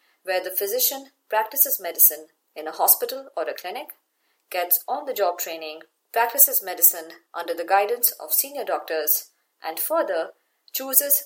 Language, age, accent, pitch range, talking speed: English, 30-49, Indian, 165-260 Hz, 135 wpm